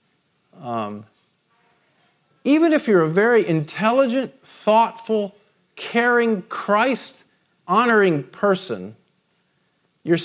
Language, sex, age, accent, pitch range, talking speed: English, male, 50-69, American, 150-205 Hz, 70 wpm